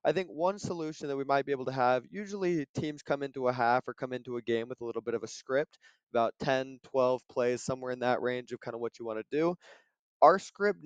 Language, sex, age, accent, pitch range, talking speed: English, male, 20-39, American, 125-150 Hz, 260 wpm